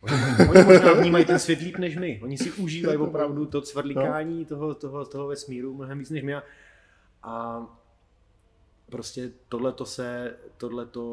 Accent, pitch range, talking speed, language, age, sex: native, 110-130 Hz, 150 wpm, Czech, 30-49, male